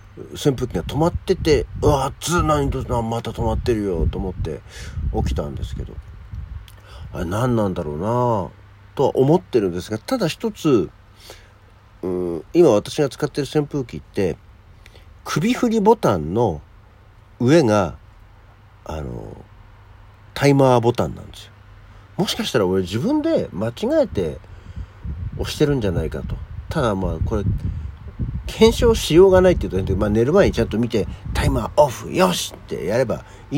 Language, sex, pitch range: Japanese, male, 95-125 Hz